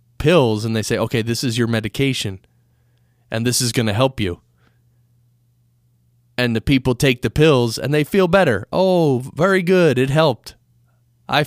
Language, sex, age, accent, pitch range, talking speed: English, male, 20-39, American, 115-145 Hz, 165 wpm